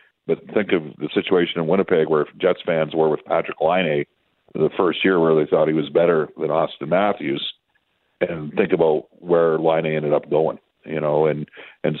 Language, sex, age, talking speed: English, male, 50-69, 190 wpm